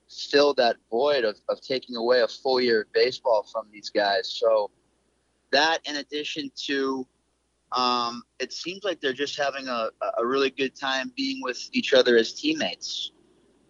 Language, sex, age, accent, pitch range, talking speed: English, male, 30-49, American, 120-145 Hz, 165 wpm